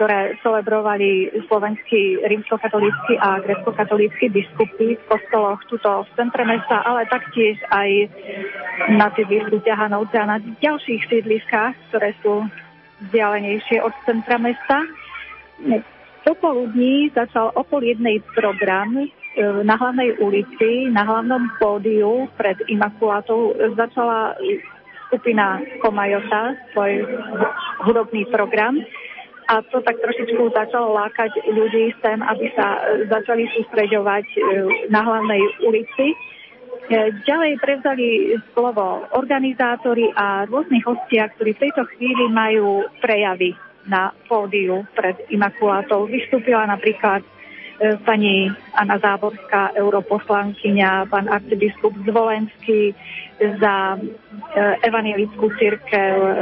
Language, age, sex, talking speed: Slovak, 30-49, female, 100 wpm